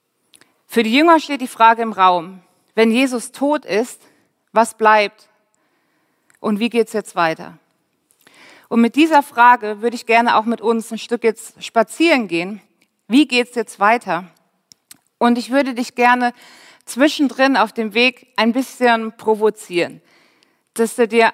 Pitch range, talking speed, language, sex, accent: 210-255 Hz, 155 wpm, German, female, German